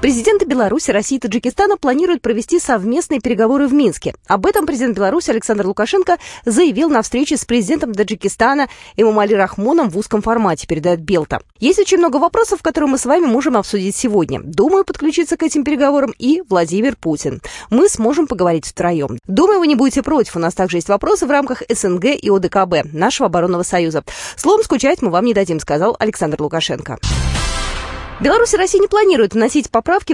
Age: 20-39